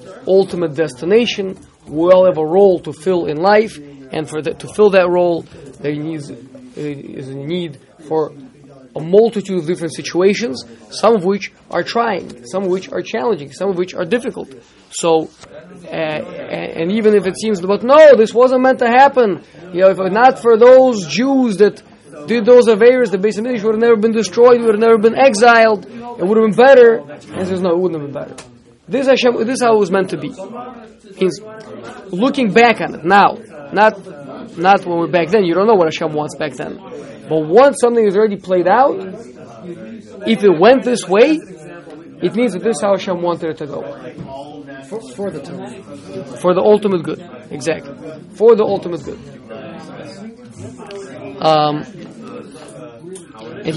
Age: 20-39